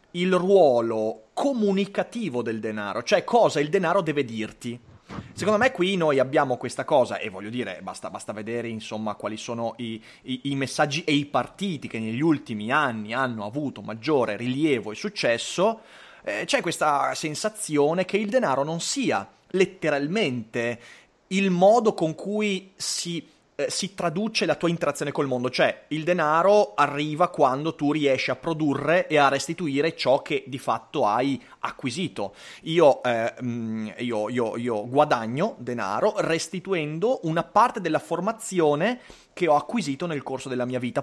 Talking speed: 150 wpm